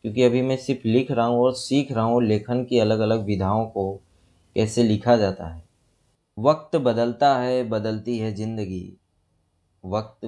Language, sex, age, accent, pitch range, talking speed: Hindi, male, 30-49, native, 100-125 Hz, 165 wpm